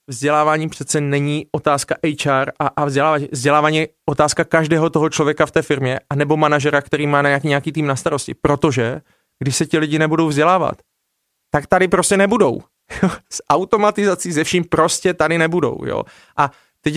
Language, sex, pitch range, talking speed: Czech, male, 150-175 Hz, 175 wpm